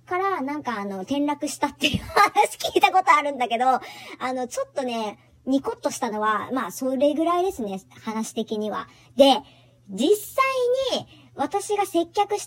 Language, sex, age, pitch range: Japanese, male, 40-59, 210-315 Hz